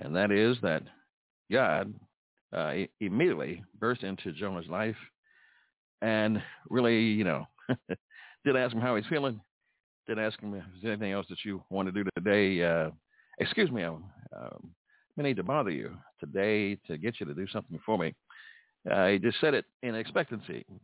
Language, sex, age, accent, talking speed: English, male, 60-79, American, 175 wpm